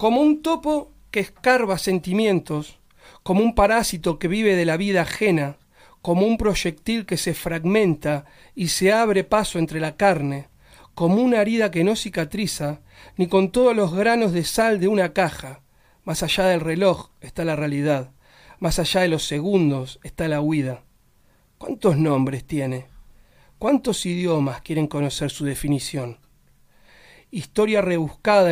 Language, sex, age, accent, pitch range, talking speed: Spanish, male, 40-59, Argentinian, 145-190 Hz, 145 wpm